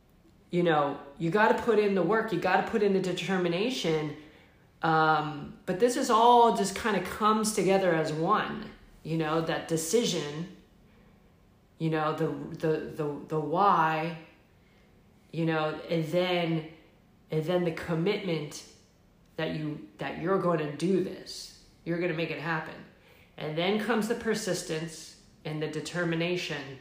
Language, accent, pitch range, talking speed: English, American, 160-215 Hz, 145 wpm